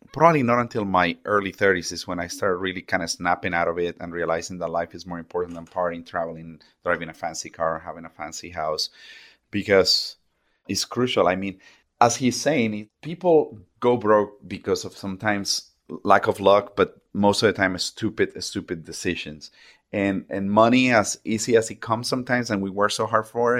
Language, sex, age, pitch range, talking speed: English, male, 30-49, 90-115 Hz, 195 wpm